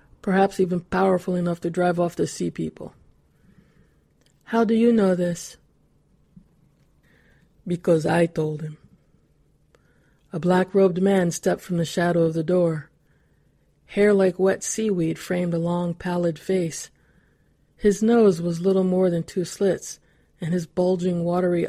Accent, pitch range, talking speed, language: American, 170-190 Hz, 140 wpm, English